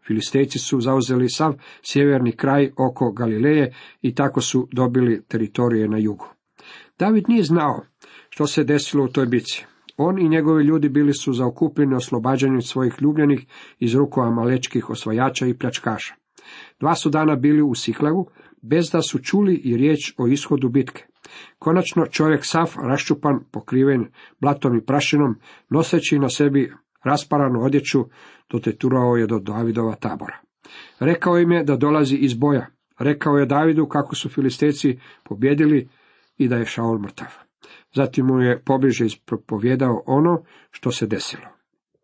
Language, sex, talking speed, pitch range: Croatian, male, 145 wpm, 125-150 Hz